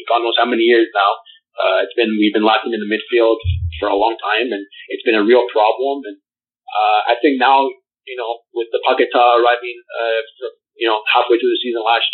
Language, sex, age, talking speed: Italian, male, 30-49, 220 wpm